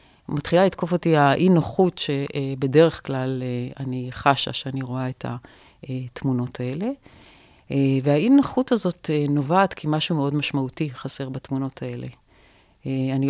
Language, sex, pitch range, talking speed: Hebrew, female, 135-160 Hz, 110 wpm